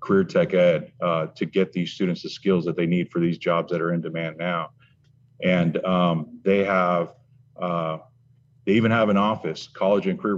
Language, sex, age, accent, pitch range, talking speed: English, male, 40-59, American, 90-125 Hz, 195 wpm